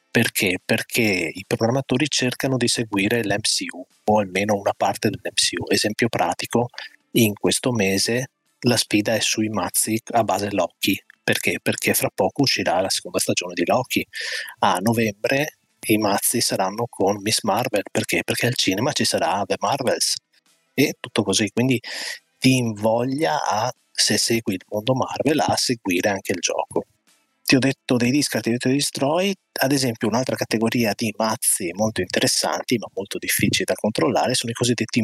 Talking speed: 160 wpm